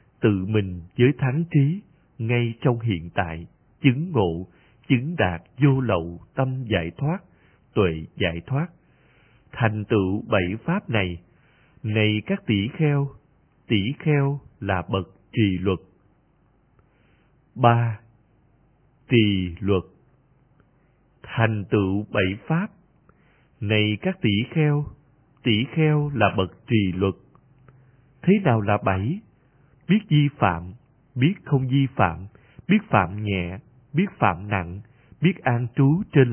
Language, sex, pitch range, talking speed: Vietnamese, male, 100-140 Hz, 120 wpm